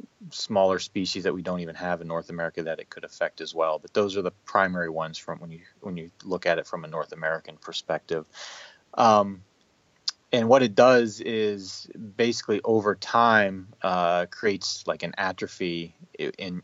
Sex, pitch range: male, 85-105 Hz